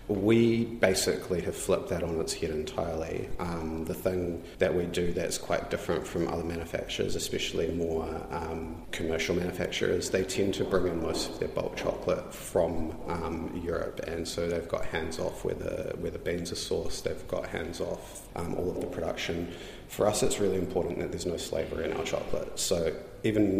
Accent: Australian